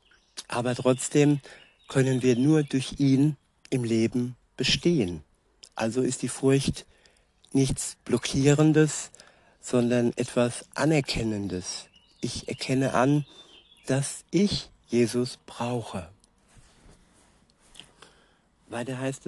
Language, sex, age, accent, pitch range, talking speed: German, male, 60-79, German, 115-140 Hz, 85 wpm